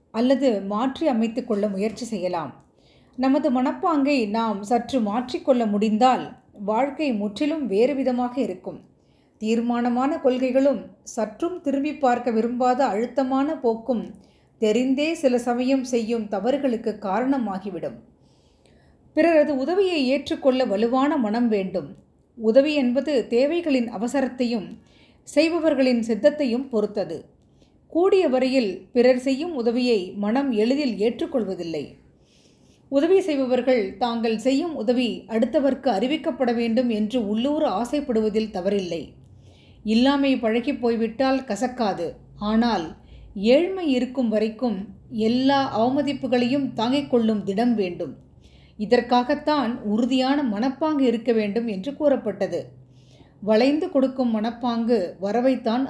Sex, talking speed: female, 95 wpm